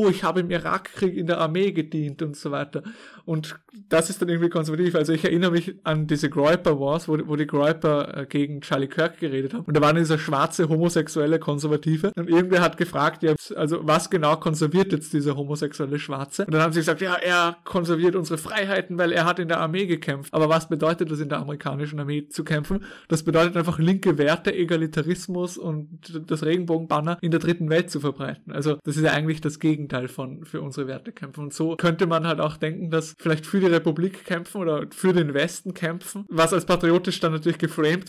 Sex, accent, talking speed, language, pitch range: male, German, 205 wpm, German, 155-180 Hz